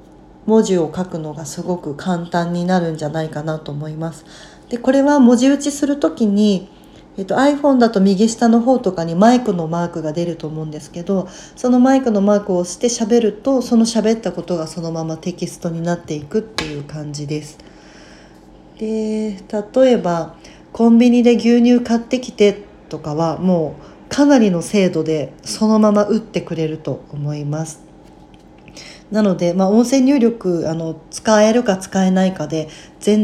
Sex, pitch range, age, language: female, 165-220 Hz, 40-59, Japanese